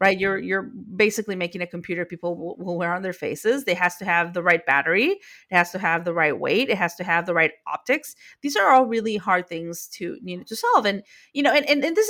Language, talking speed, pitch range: English, 260 wpm, 180-235 Hz